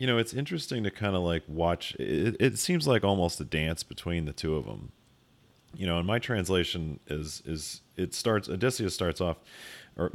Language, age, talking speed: English, 30-49, 200 wpm